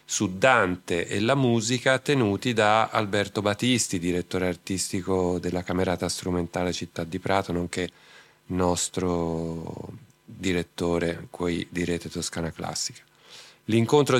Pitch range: 90-115 Hz